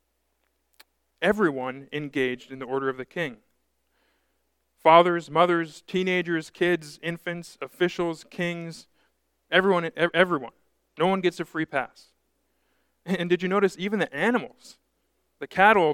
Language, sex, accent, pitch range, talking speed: English, male, American, 140-180 Hz, 120 wpm